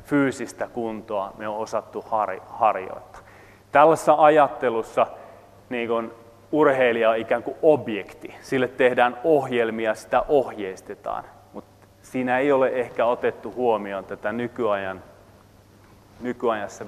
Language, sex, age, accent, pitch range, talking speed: Finnish, male, 30-49, native, 100-130 Hz, 105 wpm